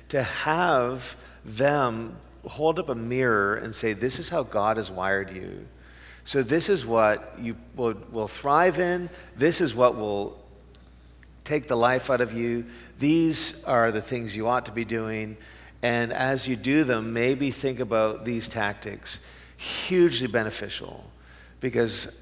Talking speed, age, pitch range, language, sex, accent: 155 wpm, 50-69, 95-125 Hz, English, male, American